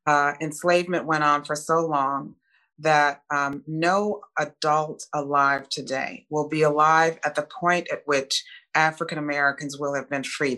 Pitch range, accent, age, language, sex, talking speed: 140-160 Hz, American, 40-59, English, female, 155 wpm